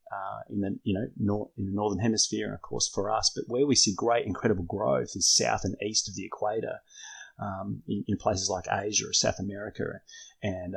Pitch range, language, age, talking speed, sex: 95-110 Hz, English, 30-49, 215 wpm, male